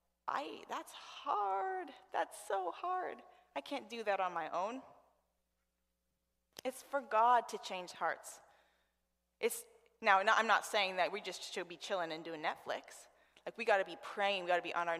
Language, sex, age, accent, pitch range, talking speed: English, female, 20-39, American, 165-215 Hz, 175 wpm